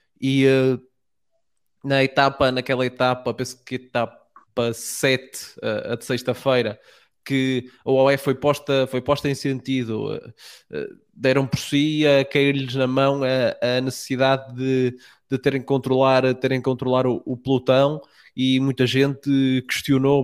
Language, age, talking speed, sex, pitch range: Portuguese, 20-39, 150 wpm, male, 125-135 Hz